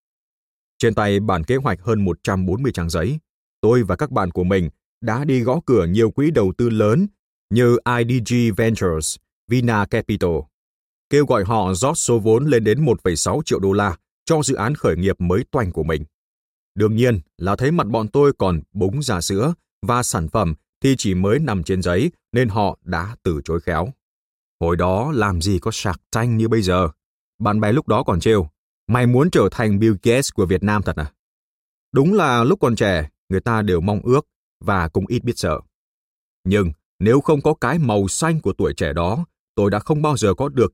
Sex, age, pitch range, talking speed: male, 20-39, 90-125 Hz, 200 wpm